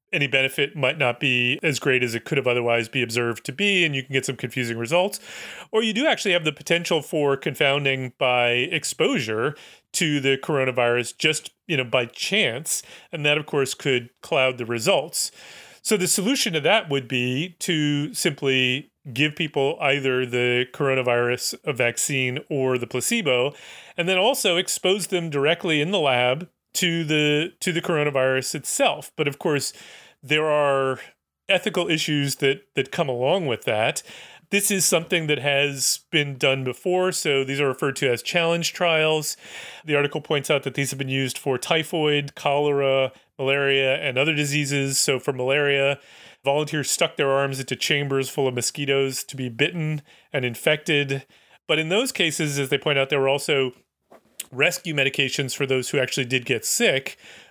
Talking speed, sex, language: 170 wpm, male, English